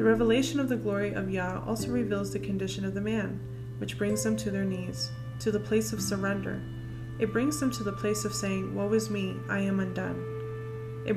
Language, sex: English, female